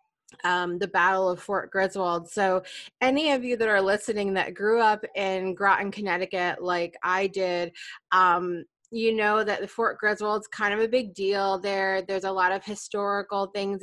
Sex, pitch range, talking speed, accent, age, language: female, 185-220 Hz, 180 wpm, American, 20-39, English